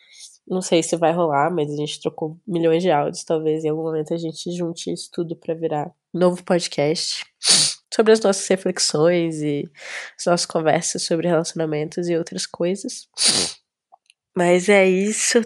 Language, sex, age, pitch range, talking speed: Portuguese, female, 20-39, 170-200 Hz, 160 wpm